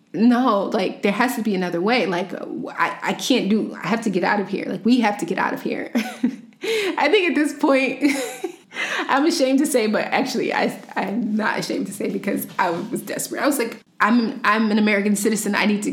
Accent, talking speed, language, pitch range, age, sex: American, 225 wpm, English, 195-250 Hz, 20-39, female